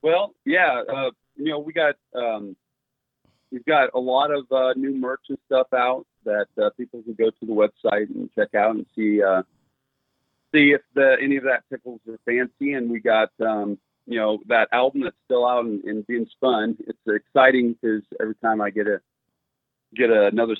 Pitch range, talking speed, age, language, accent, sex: 100-130 Hz, 200 wpm, 40-59, English, American, male